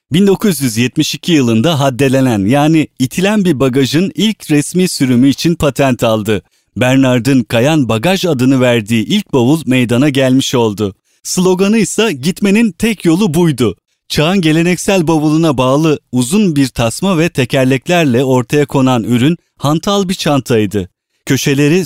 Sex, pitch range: male, 125-165 Hz